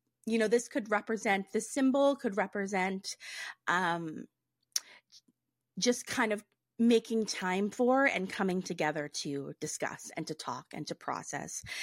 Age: 30-49